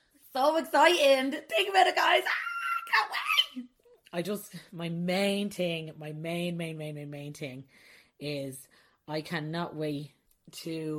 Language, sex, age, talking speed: English, female, 30-49, 145 wpm